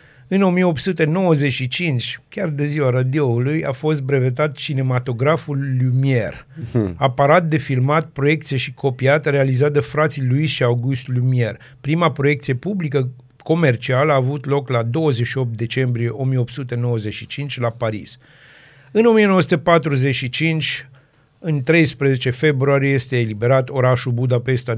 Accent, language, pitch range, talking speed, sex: native, Romanian, 125-150 Hz, 110 wpm, male